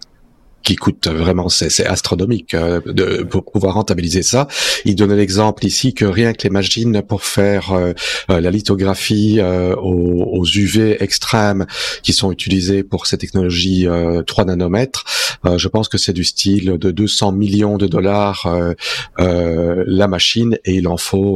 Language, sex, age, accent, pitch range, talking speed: French, male, 40-59, French, 90-110 Hz, 165 wpm